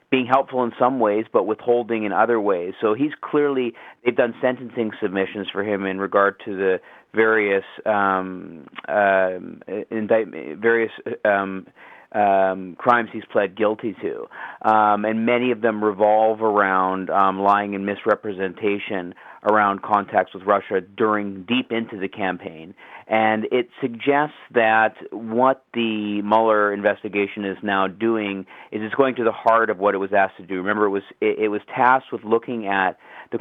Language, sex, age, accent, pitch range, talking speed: English, male, 40-59, American, 100-115 Hz, 160 wpm